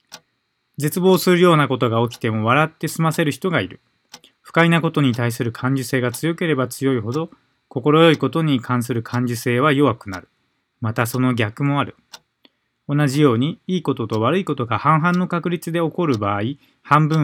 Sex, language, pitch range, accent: male, Japanese, 120-175 Hz, native